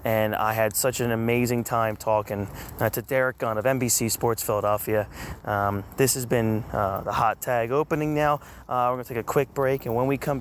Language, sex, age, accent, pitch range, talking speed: English, male, 20-39, American, 105-125 Hz, 215 wpm